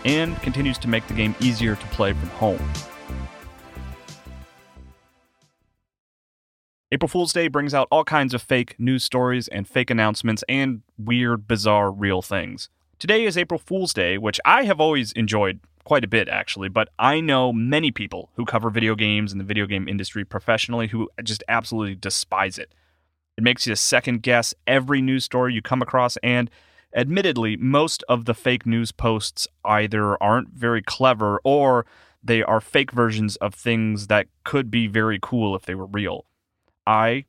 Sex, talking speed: male, 165 wpm